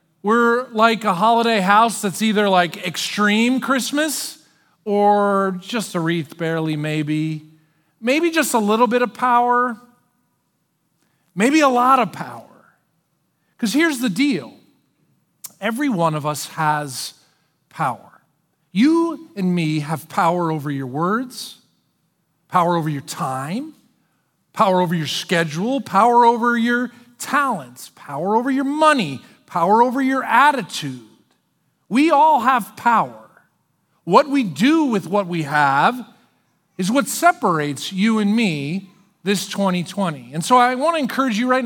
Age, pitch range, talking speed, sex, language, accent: 40-59, 175-245 Hz, 135 wpm, male, English, American